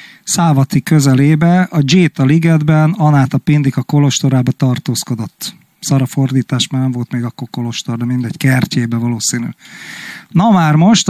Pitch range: 135-170 Hz